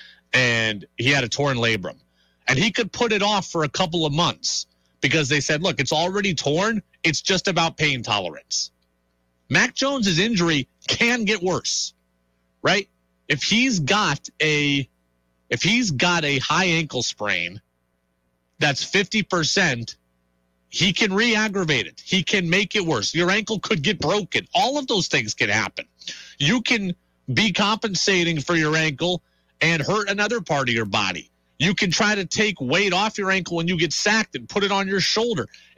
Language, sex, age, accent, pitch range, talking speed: English, male, 40-59, American, 115-190 Hz, 175 wpm